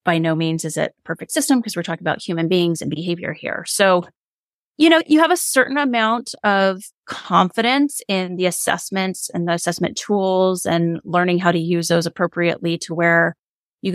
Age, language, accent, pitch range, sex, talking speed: 30-49, English, American, 170-220 Hz, female, 185 wpm